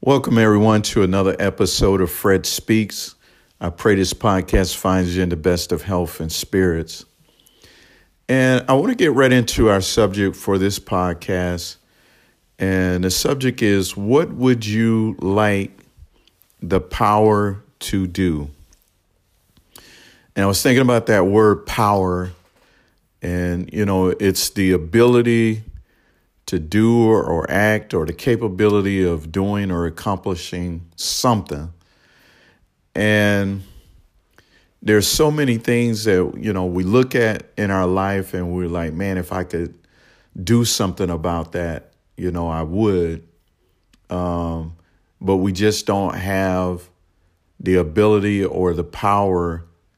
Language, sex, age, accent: English, male, 50-69, American